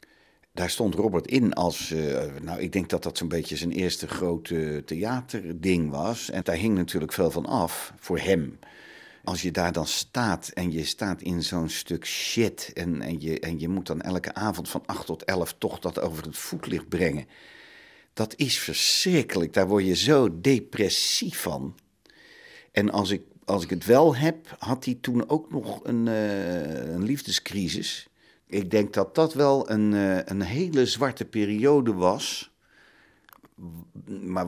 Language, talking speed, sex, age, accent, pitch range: Dutch, 160 wpm, male, 50-69, Dutch, 85-115 Hz